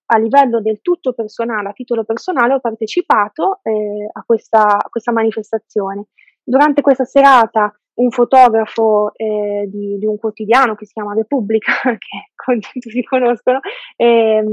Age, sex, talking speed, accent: 20-39, female, 145 wpm, native